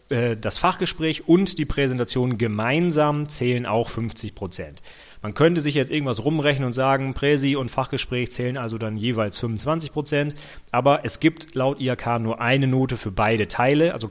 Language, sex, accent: German, male, German